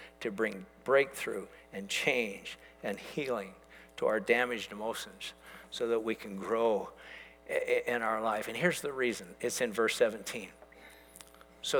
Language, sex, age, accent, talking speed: English, male, 60-79, American, 140 wpm